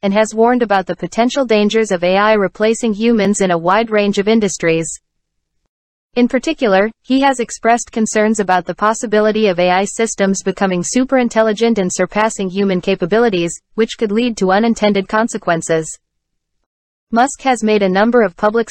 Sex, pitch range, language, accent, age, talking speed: female, 195-230 Hz, English, American, 30-49, 155 wpm